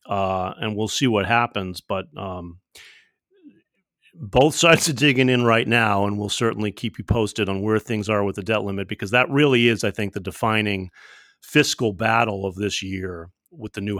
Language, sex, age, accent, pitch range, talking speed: English, male, 40-59, American, 105-135 Hz, 195 wpm